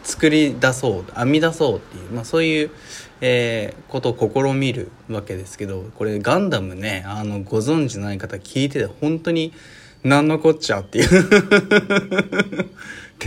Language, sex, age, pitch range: Japanese, male, 20-39, 105-155 Hz